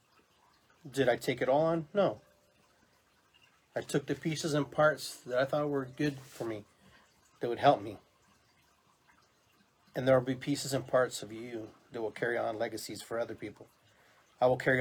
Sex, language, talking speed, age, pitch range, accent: male, English, 180 wpm, 30-49, 110-130 Hz, American